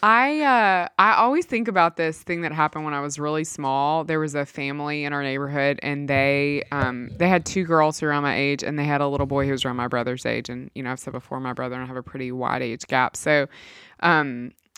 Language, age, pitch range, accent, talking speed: English, 20-39, 130-160 Hz, American, 260 wpm